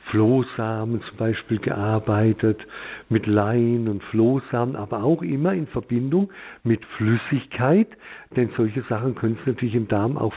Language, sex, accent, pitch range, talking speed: German, male, German, 110-135 Hz, 140 wpm